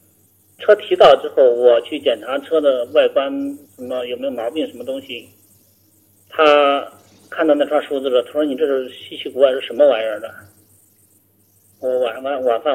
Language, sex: Chinese, male